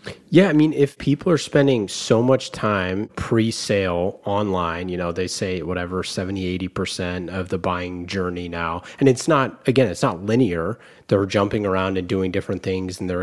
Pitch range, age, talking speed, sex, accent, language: 95-125 Hz, 30-49, 180 wpm, male, American, English